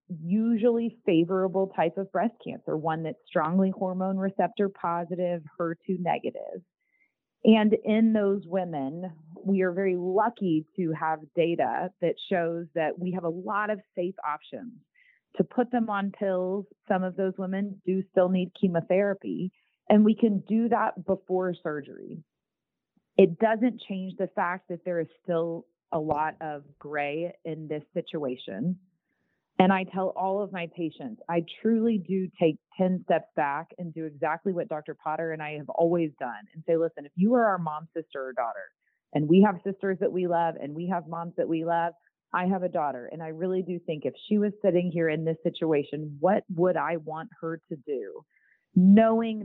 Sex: female